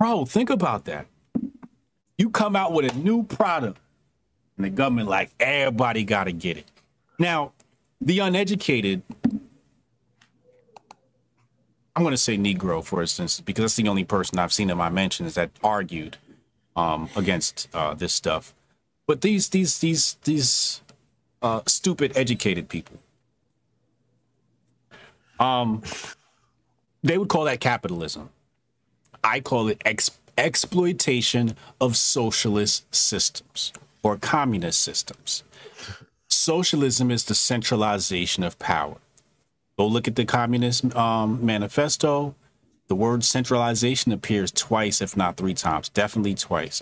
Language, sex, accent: English, male, American